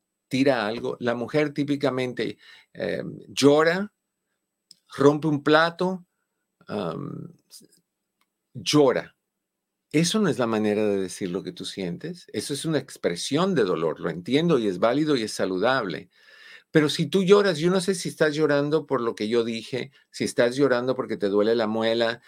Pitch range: 110-145 Hz